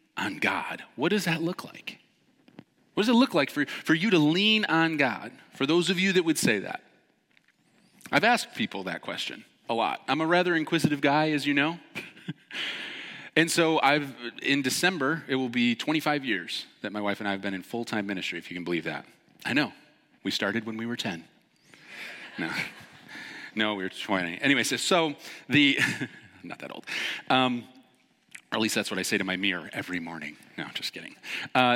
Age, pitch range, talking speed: 30-49, 130-185 Hz, 195 wpm